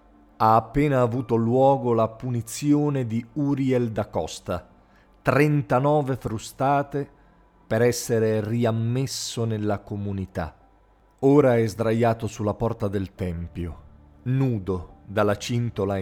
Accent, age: native, 40-59